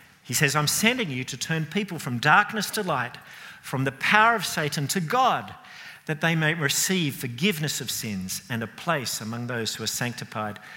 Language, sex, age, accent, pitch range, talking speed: English, male, 50-69, Australian, 130-185 Hz, 190 wpm